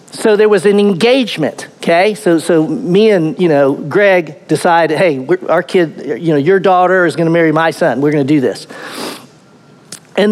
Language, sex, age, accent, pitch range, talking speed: English, male, 50-69, American, 165-210 Hz, 200 wpm